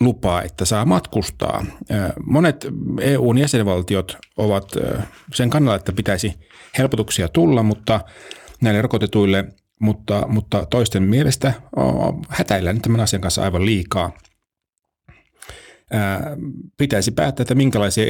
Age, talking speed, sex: 30-49, 105 wpm, male